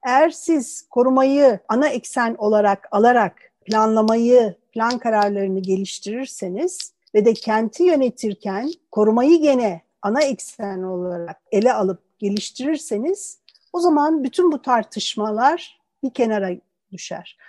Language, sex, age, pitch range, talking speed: Turkish, female, 50-69, 200-275 Hz, 105 wpm